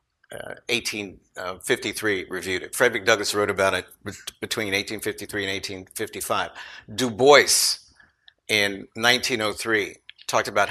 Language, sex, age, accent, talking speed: English, male, 50-69, American, 120 wpm